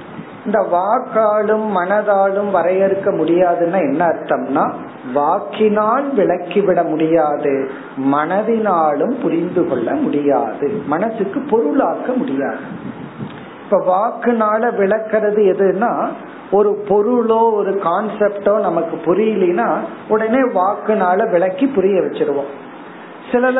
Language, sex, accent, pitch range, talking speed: Tamil, male, native, 160-225 Hz, 80 wpm